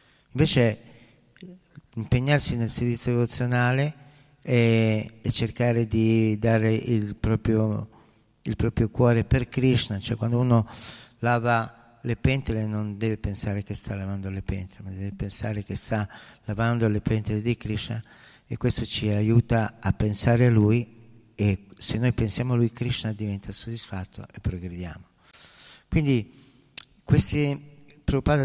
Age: 50-69